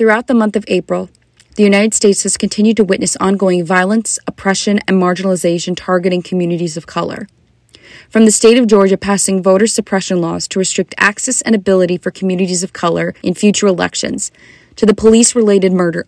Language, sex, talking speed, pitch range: English, female, 170 wpm, 175-205 Hz